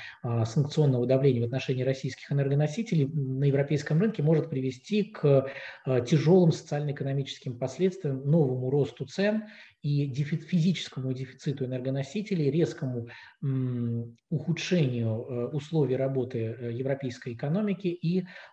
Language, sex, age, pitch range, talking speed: Russian, male, 20-39, 125-155 Hz, 95 wpm